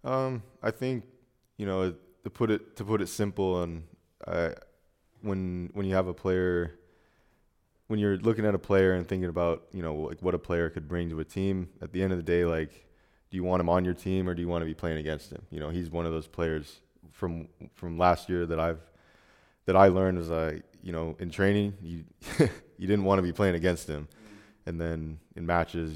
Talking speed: 230 wpm